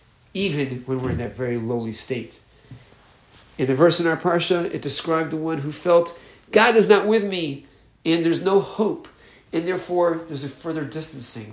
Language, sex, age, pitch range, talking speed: English, male, 40-59, 120-165 Hz, 180 wpm